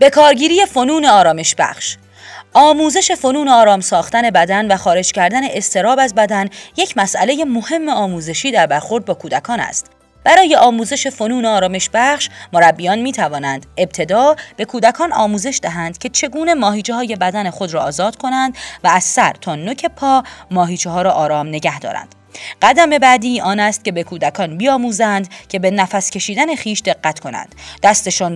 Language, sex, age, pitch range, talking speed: Persian, female, 30-49, 175-260 Hz, 155 wpm